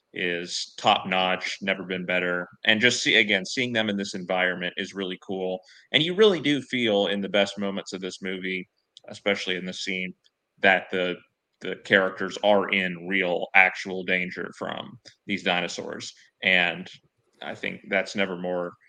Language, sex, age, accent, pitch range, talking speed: English, male, 30-49, American, 90-105 Hz, 160 wpm